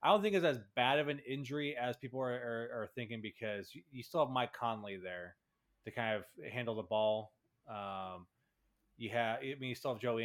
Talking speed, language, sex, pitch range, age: 215 wpm, English, male, 110-130 Hz, 20-39